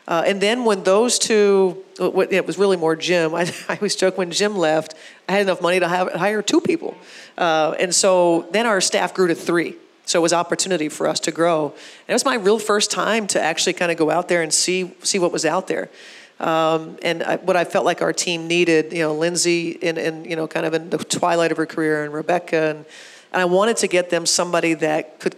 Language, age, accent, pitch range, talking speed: English, 40-59, American, 160-185 Hz, 245 wpm